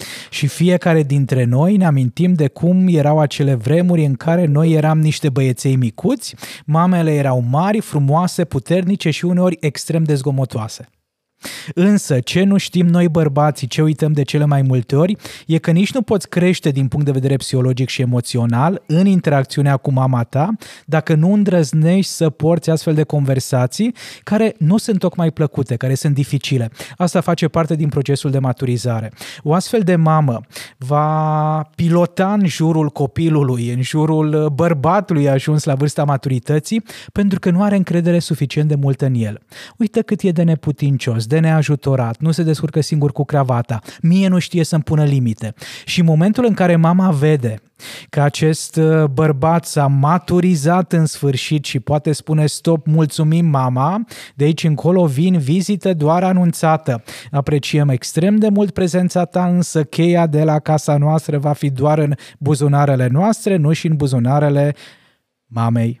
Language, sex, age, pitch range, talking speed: Romanian, male, 20-39, 140-170 Hz, 160 wpm